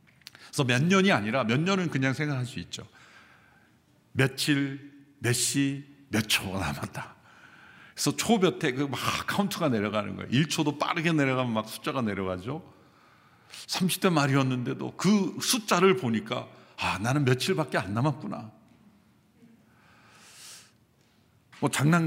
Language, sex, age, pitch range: Korean, male, 50-69, 110-160 Hz